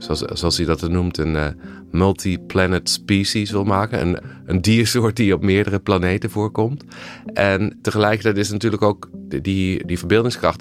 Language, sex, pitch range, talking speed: Dutch, male, 85-100 Hz, 155 wpm